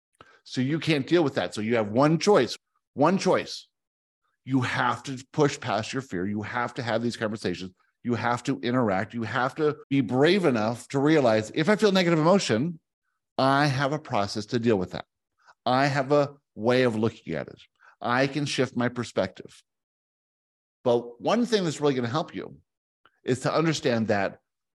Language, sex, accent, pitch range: English, male, American, 115-155 Hz